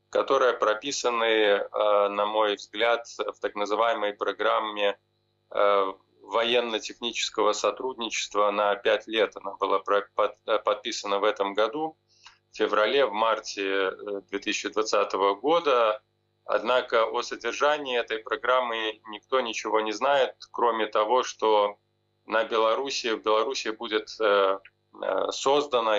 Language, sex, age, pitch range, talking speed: Ukrainian, male, 20-39, 105-115 Hz, 100 wpm